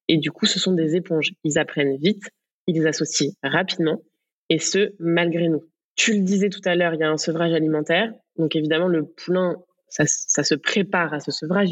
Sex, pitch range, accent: female, 155-180 Hz, French